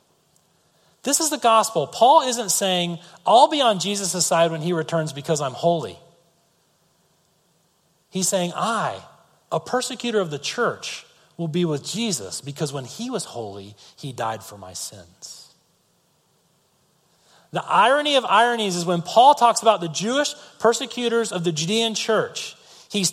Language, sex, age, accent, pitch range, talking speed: English, male, 40-59, American, 130-210 Hz, 150 wpm